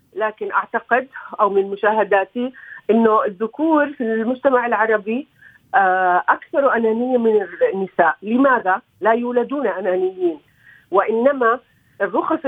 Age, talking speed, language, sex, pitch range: 40-59, 95 wpm, Arabic, female, 200-260 Hz